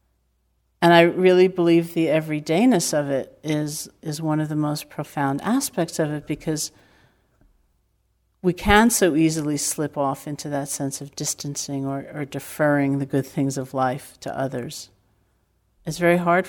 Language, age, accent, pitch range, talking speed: English, 50-69, American, 140-160 Hz, 155 wpm